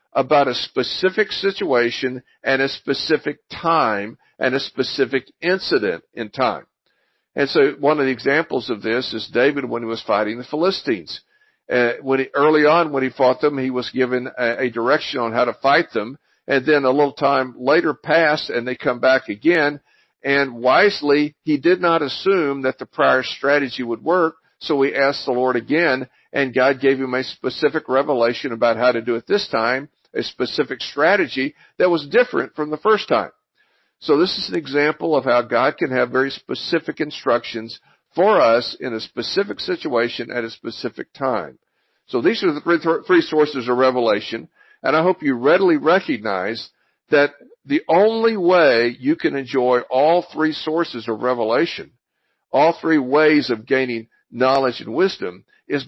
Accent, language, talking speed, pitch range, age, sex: American, English, 170 wpm, 125-165 Hz, 50-69, male